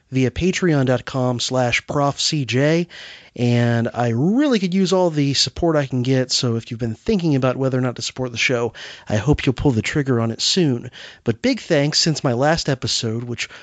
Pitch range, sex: 120-155 Hz, male